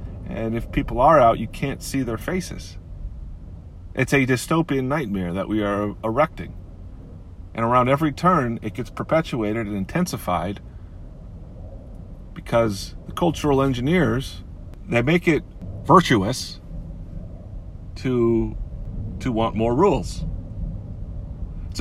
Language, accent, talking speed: English, American, 115 wpm